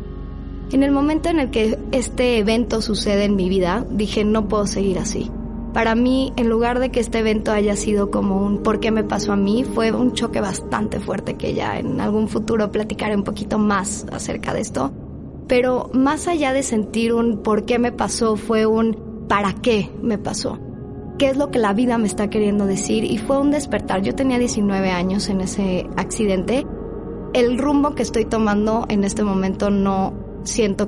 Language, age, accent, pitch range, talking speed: Spanish, 20-39, Mexican, 200-240 Hz, 190 wpm